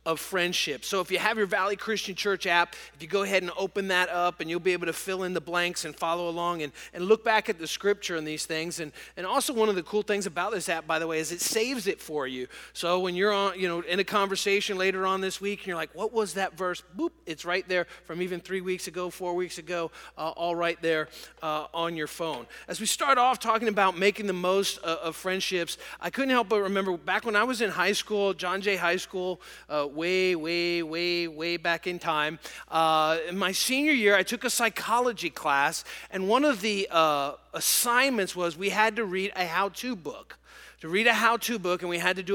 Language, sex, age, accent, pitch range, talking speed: English, male, 30-49, American, 165-200 Hz, 240 wpm